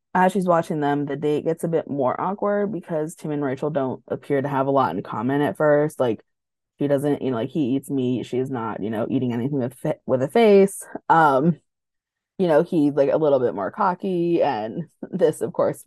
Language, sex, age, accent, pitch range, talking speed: English, female, 20-39, American, 140-195 Hz, 220 wpm